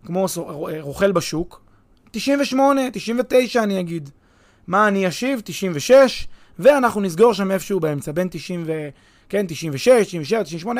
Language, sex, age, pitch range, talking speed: Hebrew, male, 20-39, 165-225 Hz, 130 wpm